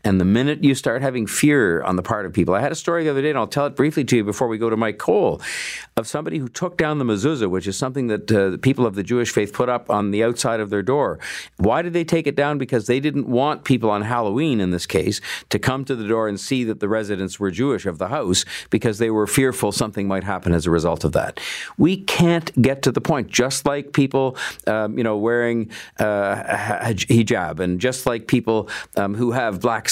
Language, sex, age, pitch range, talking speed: English, male, 50-69, 100-125 Hz, 250 wpm